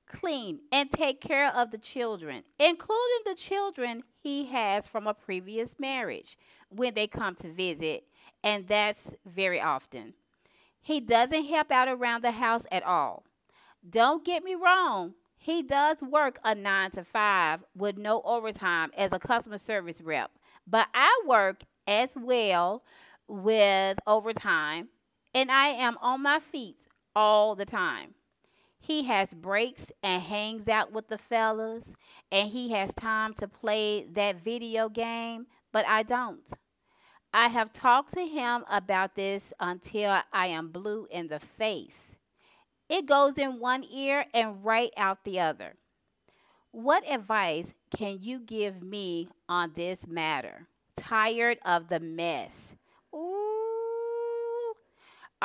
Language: English